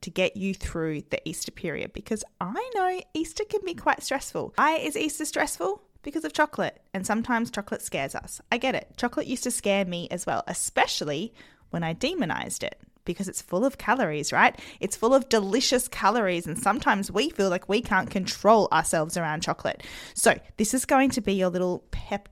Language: English